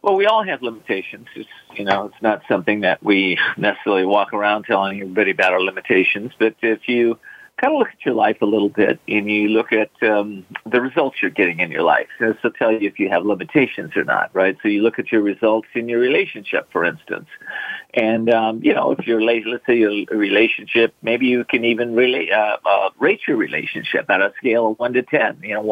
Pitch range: 110-130 Hz